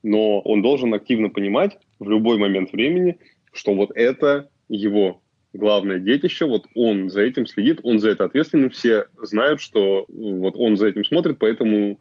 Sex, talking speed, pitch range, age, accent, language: male, 165 wpm, 100-115 Hz, 20-39, native, Russian